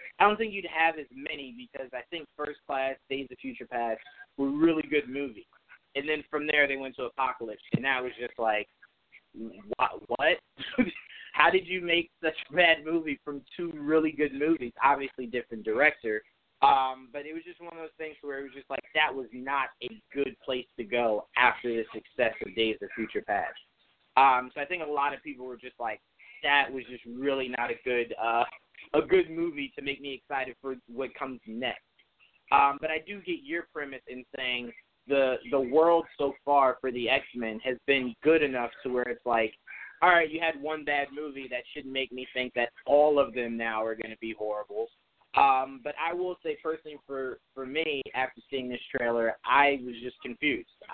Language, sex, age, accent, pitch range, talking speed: English, male, 30-49, American, 125-155 Hz, 205 wpm